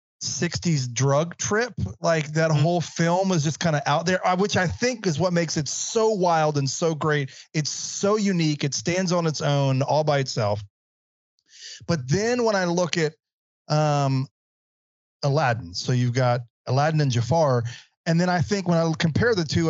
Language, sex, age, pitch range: English, male, 30-49, 130-165 Hz